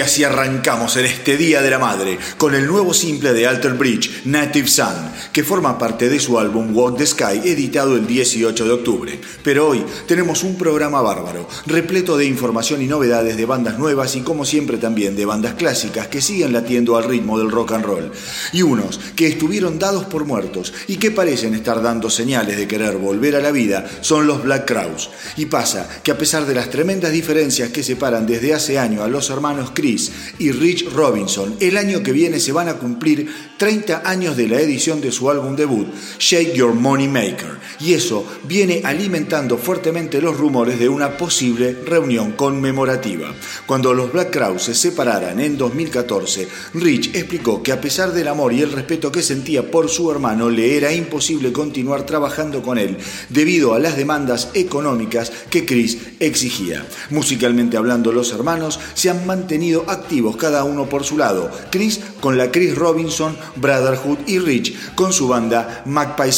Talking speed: 185 wpm